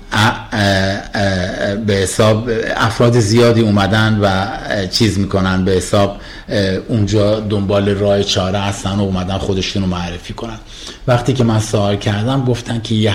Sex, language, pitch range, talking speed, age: male, Persian, 95-115 Hz, 145 wpm, 50-69